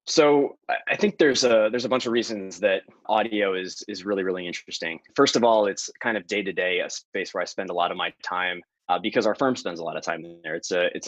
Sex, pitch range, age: male, 95-115 Hz, 20-39